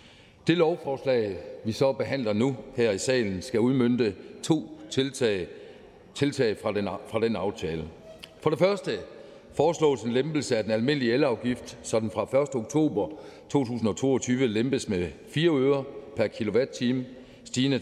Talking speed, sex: 140 wpm, male